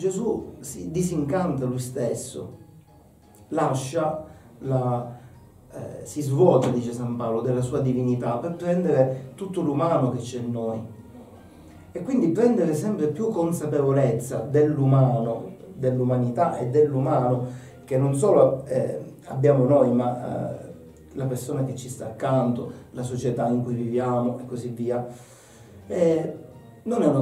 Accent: native